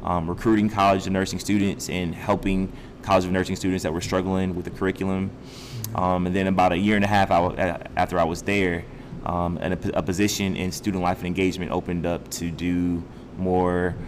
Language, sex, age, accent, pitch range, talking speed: English, male, 20-39, American, 90-105 Hz, 190 wpm